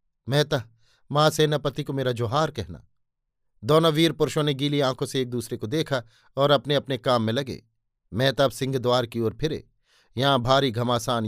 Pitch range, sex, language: 125-165 Hz, male, Hindi